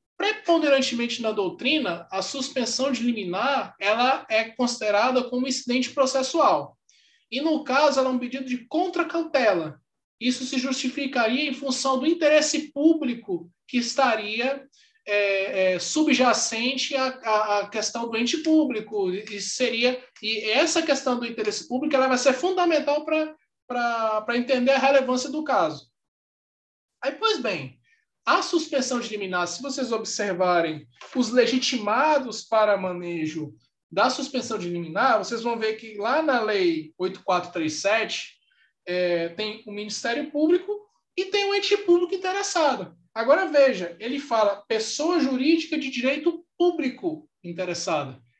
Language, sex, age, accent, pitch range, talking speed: Portuguese, male, 20-39, Brazilian, 215-300 Hz, 125 wpm